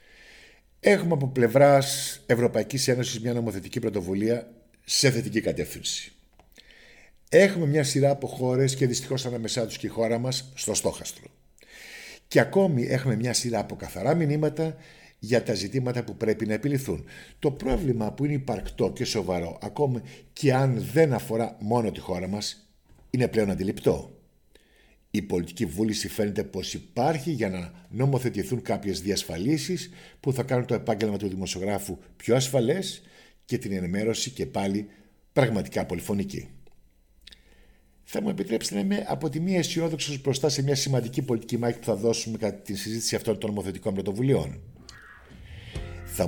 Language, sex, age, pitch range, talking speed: Greek, male, 50-69, 100-135 Hz, 145 wpm